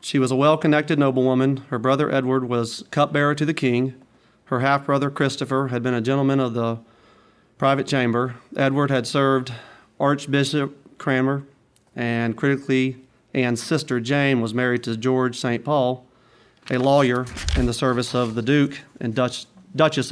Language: English